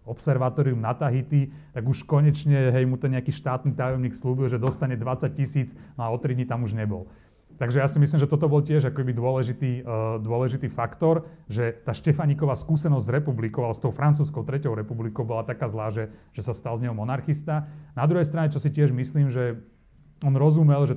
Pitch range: 110-140 Hz